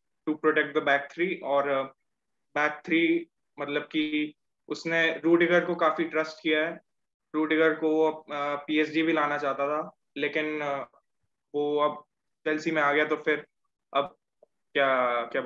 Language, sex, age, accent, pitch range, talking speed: Hindi, male, 20-39, native, 145-160 Hz, 150 wpm